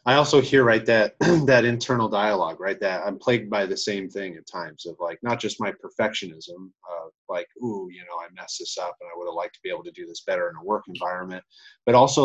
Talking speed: 250 wpm